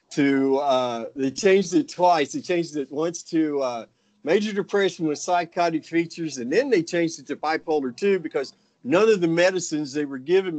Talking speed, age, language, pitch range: 185 wpm, 50-69, English, 125-175 Hz